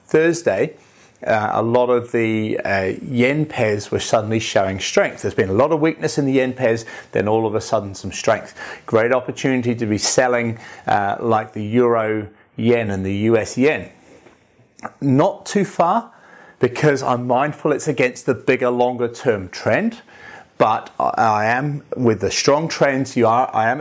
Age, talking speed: 30-49, 170 wpm